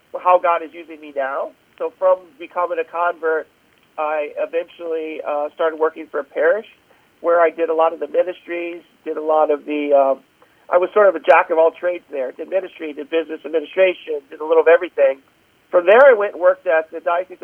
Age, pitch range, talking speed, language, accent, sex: 50-69, 155-185 Hz, 205 wpm, English, American, male